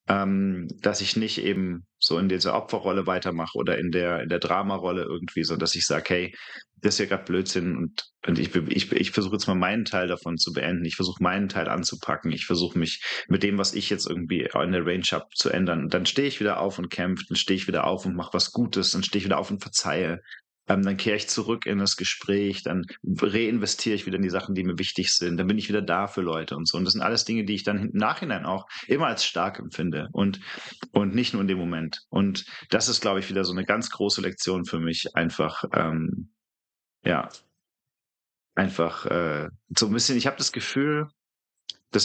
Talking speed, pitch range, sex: 225 wpm, 90-110 Hz, male